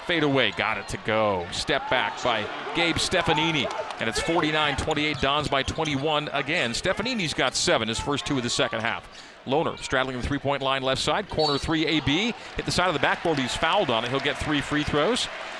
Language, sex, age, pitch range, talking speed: English, male, 40-59, 125-155 Hz, 205 wpm